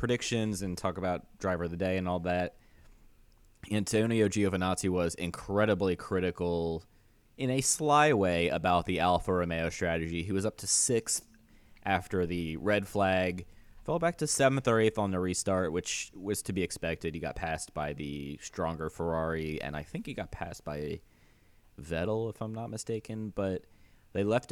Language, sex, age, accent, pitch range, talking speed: English, male, 20-39, American, 85-110 Hz, 170 wpm